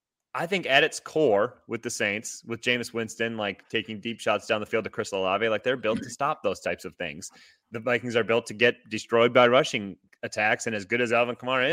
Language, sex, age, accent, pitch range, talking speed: English, male, 30-49, American, 105-130 Hz, 235 wpm